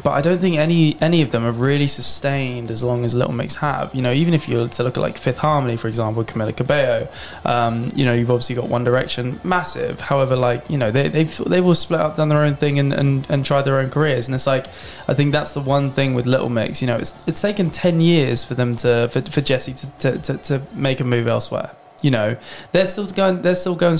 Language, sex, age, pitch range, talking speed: English, male, 20-39, 120-150 Hz, 260 wpm